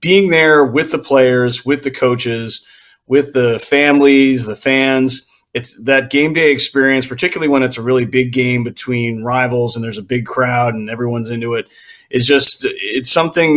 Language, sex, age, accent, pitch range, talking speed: English, male, 30-49, American, 115-135 Hz, 175 wpm